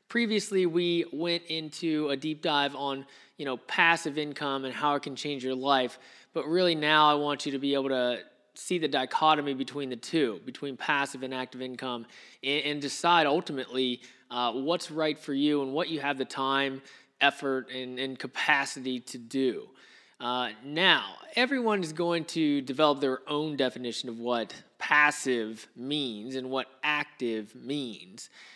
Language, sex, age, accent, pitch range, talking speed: English, male, 20-39, American, 130-155 Hz, 160 wpm